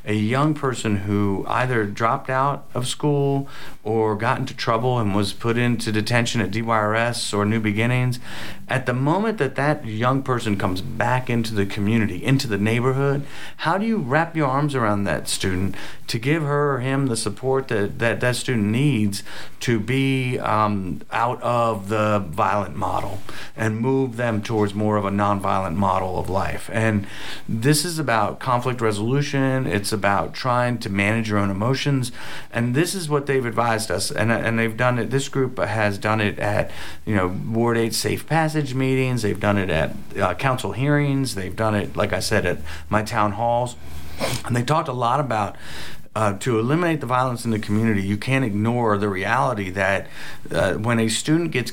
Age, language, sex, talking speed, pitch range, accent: 40-59, English, male, 185 wpm, 105-130 Hz, American